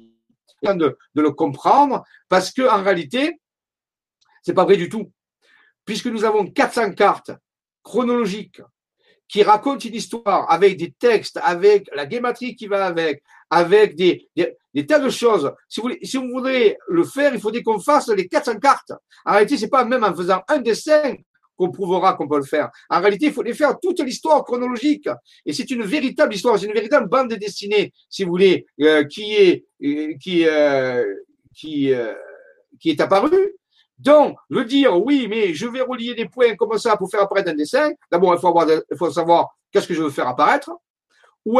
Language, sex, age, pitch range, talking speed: French, male, 50-69, 180-300 Hz, 190 wpm